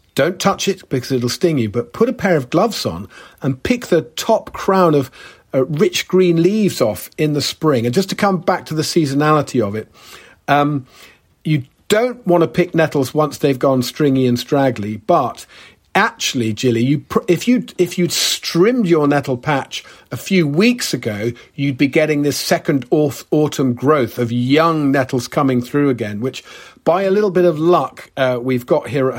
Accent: British